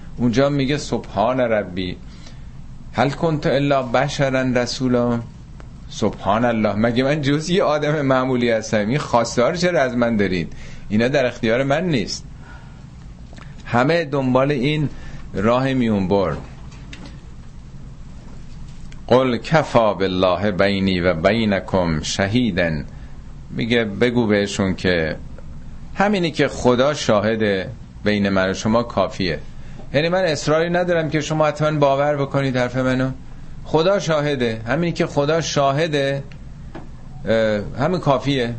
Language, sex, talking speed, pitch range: Persian, male, 110 wpm, 100-140 Hz